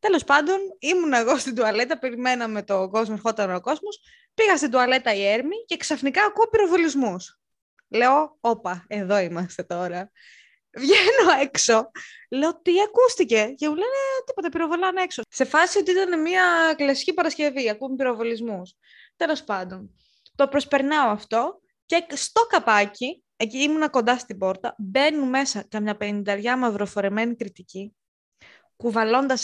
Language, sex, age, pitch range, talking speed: Greek, female, 20-39, 220-320 Hz, 135 wpm